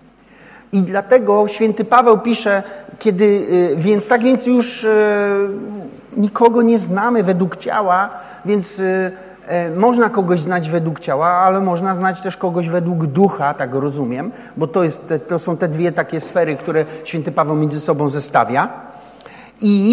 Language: Polish